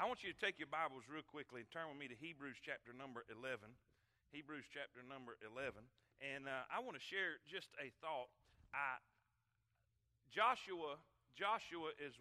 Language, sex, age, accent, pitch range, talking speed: English, male, 40-59, American, 125-180 Hz, 170 wpm